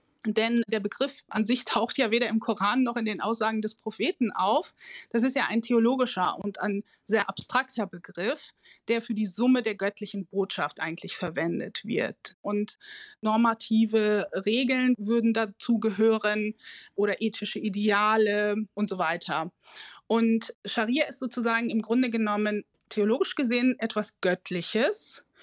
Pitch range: 210-250 Hz